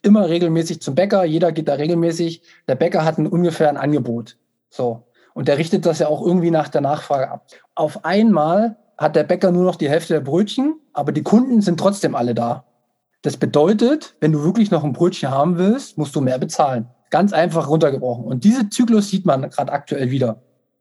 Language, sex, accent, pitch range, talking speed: German, male, German, 135-180 Hz, 200 wpm